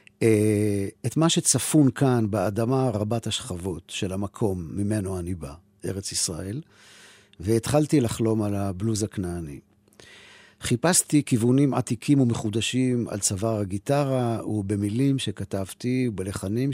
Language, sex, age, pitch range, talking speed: Hebrew, male, 50-69, 105-130 Hz, 105 wpm